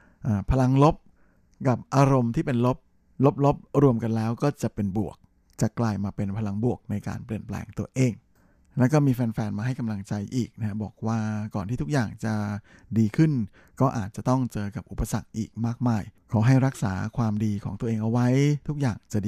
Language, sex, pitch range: Thai, male, 105-125 Hz